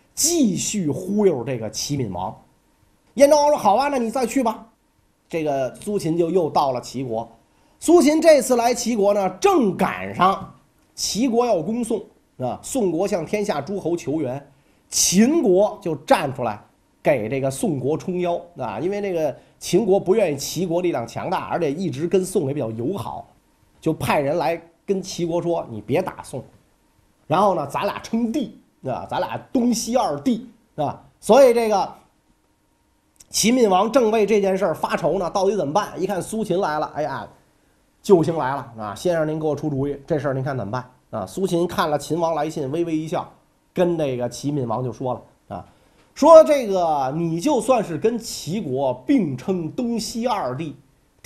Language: Chinese